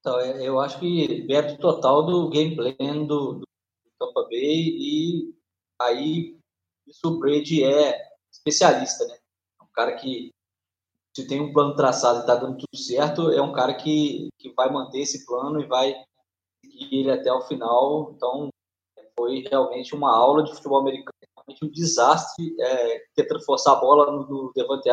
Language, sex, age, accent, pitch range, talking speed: Portuguese, male, 20-39, Brazilian, 135-170 Hz, 165 wpm